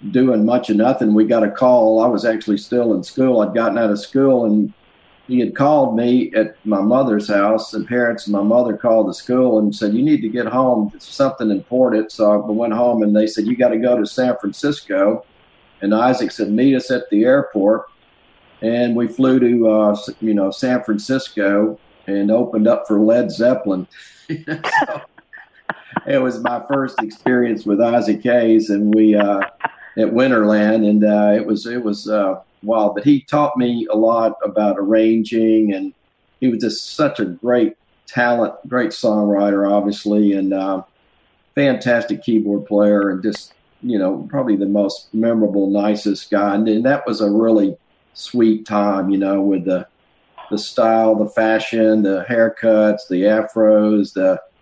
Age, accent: 50-69, American